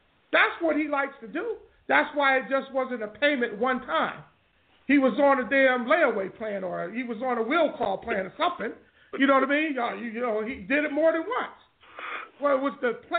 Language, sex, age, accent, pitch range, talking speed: English, male, 50-69, American, 245-315 Hz, 215 wpm